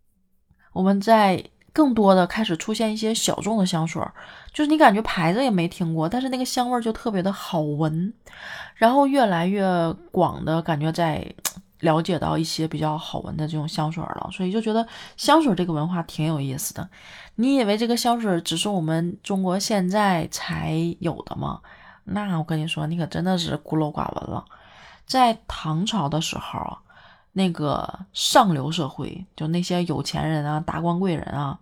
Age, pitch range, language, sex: 20-39, 160-210 Hz, Chinese, female